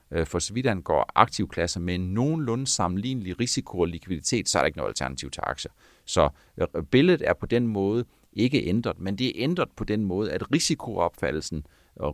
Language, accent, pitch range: Danish, native, 75-100 Hz